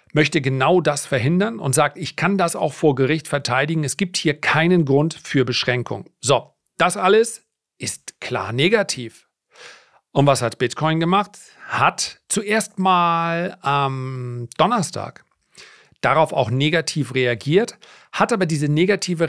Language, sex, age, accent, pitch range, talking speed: German, male, 40-59, German, 135-170 Hz, 140 wpm